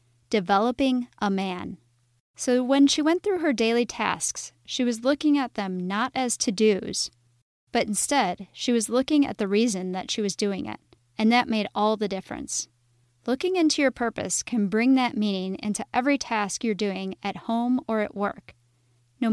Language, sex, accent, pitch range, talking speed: English, female, American, 185-240 Hz, 180 wpm